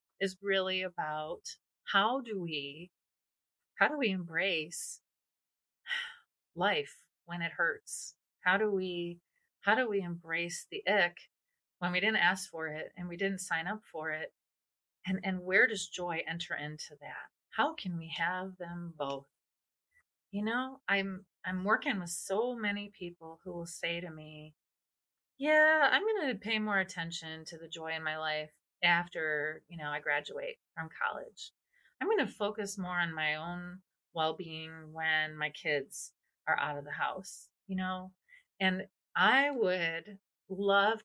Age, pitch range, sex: 30-49, 155-195 Hz, female